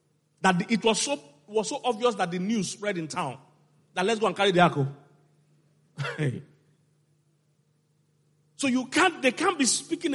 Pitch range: 145-180 Hz